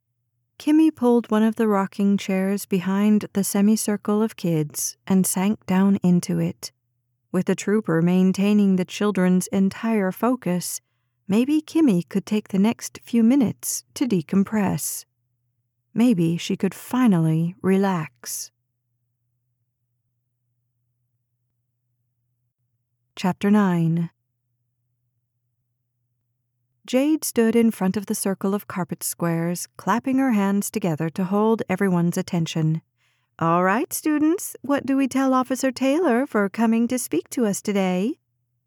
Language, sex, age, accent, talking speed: English, female, 40-59, American, 120 wpm